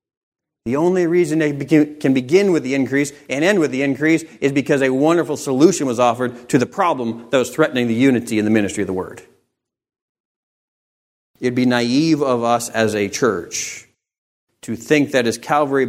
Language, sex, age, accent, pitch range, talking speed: English, male, 40-59, American, 115-140 Hz, 180 wpm